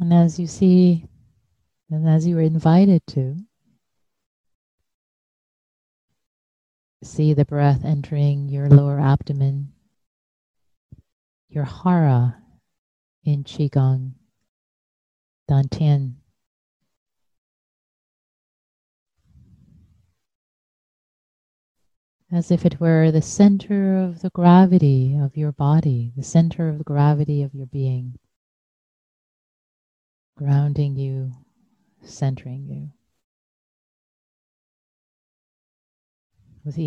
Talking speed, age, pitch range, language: 75 wpm, 30-49, 120-155 Hz, English